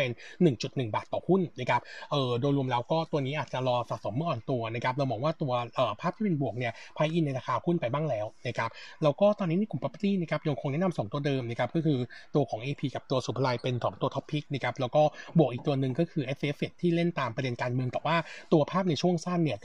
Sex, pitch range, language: male, 125-160 Hz, Thai